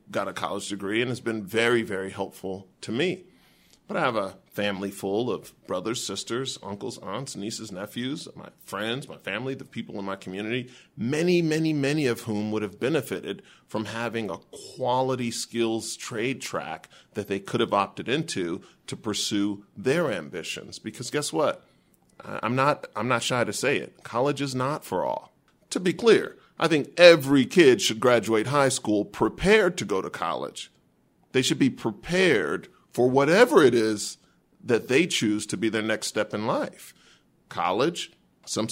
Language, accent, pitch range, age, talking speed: English, American, 100-130 Hz, 40-59, 170 wpm